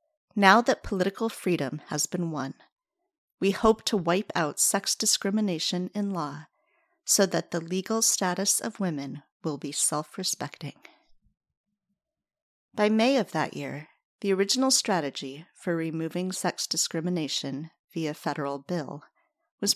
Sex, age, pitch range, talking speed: female, 40-59, 160-205 Hz, 130 wpm